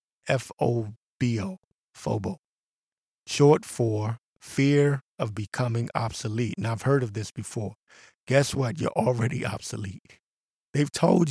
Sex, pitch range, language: male, 110-135 Hz, English